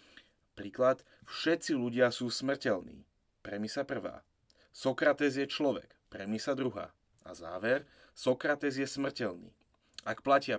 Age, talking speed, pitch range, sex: 30-49, 110 wpm, 110-135 Hz, male